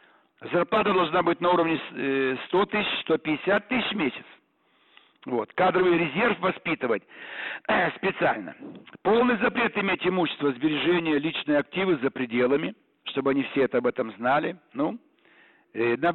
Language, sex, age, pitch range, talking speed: Russian, male, 60-79, 145-200 Hz, 130 wpm